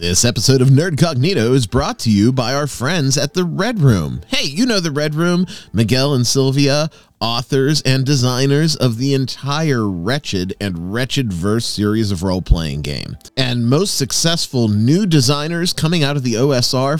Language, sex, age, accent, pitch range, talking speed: English, male, 30-49, American, 105-140 Hz, 175 wpm